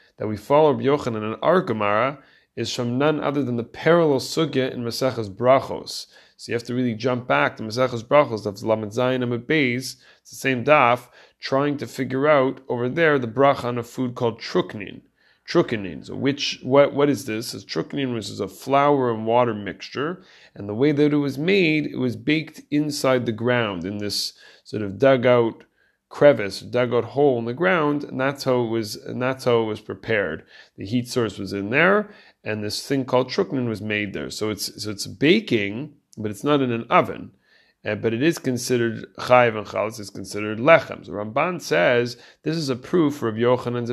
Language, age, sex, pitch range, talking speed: English, 30-49, male, 110-145 Hz, 195 wpm